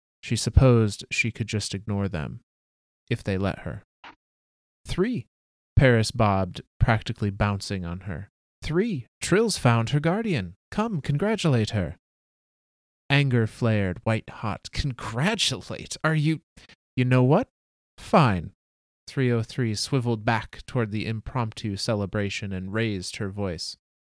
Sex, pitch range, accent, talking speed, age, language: male, 100-140 Hz, American, 115 wpm, 30-49, English